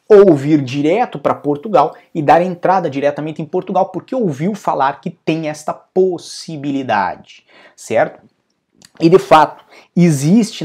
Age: 20-39